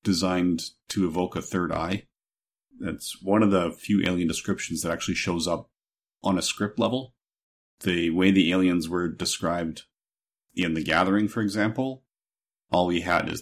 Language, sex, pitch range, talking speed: English, male, 80-95 Hz, 160 wpm